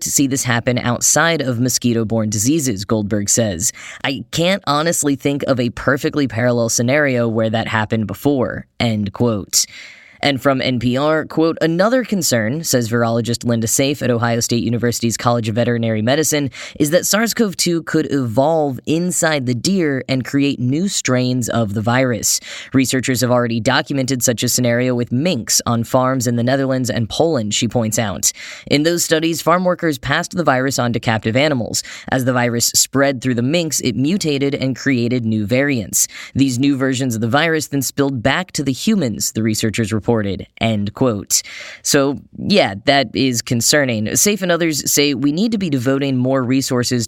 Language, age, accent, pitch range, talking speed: English, 10-29, American, 120-145 Hz, 170 wpm